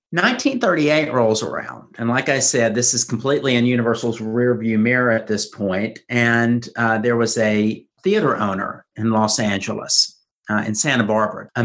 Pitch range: 115-170 Hz